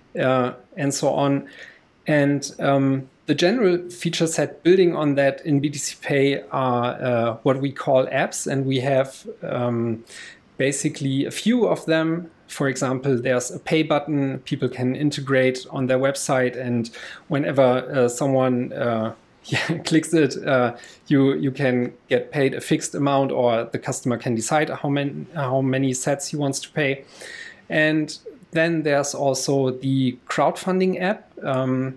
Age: 40-59